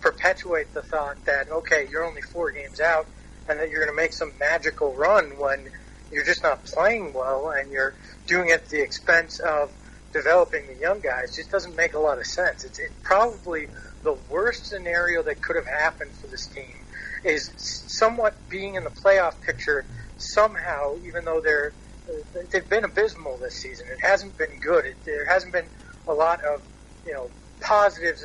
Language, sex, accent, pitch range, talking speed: English, male, American, 150-215 Hz, 180 wpm